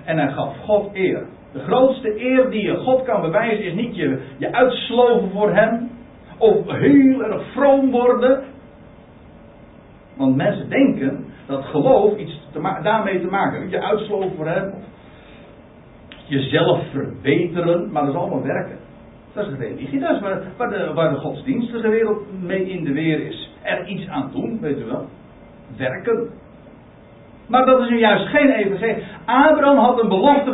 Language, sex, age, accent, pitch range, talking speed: Dutch, male, 60-79, Dutch, 160-230 Hz, 160 wpm